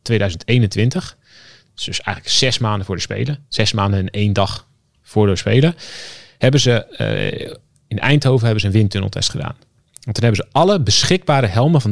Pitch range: 100-130 Hz